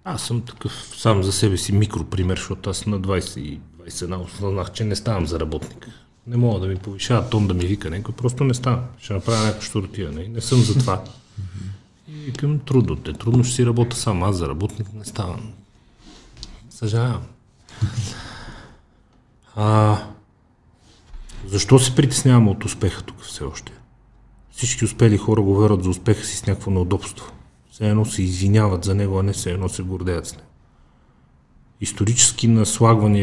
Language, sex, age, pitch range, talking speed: Bulgarian, male, 40-59, 95-115 Hz, 160 wpm